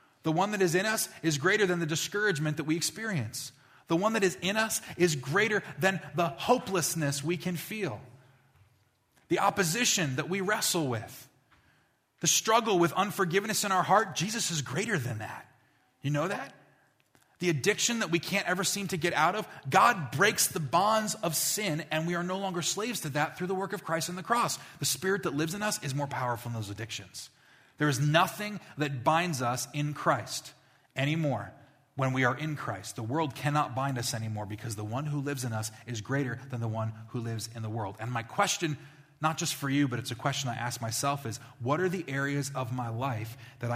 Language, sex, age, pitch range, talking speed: English, male, 30-49, 120-170 Hz, 210 wpm